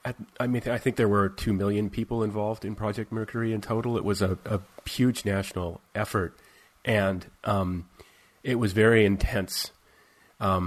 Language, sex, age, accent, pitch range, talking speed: English, male, 30-49, American, 90-105 Hz, 165 wpm